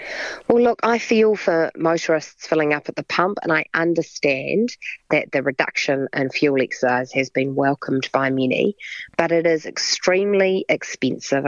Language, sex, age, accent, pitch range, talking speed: English, female, 40-59, Australian, 140-170 Hz, 155 wpm